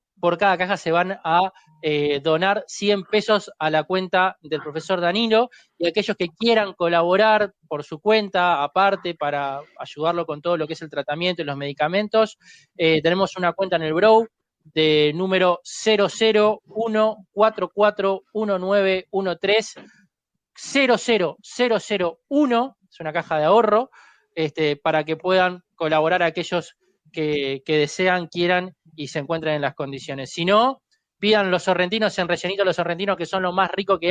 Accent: Argentinian